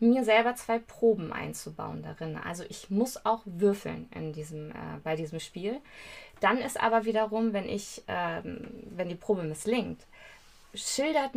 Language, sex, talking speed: German, female, 155 wpm